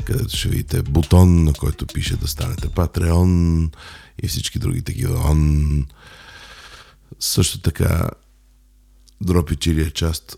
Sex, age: male, 50-69